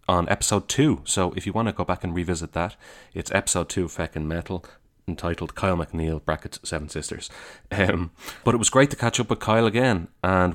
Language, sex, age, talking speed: English, male, 30-49, 210 wpm